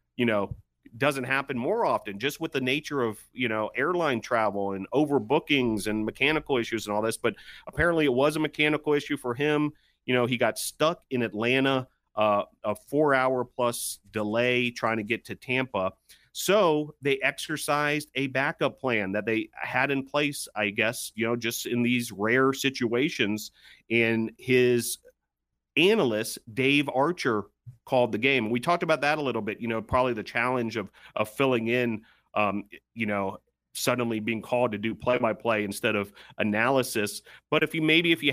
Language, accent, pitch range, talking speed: English, American, 110-135 Hz, 175 wpm